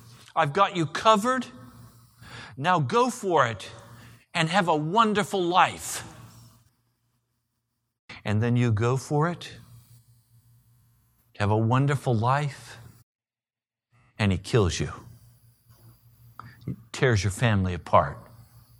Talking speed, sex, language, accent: 100 wpm, male, English, American